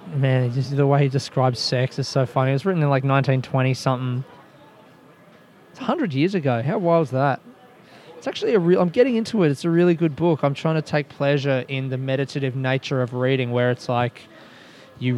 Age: 20-39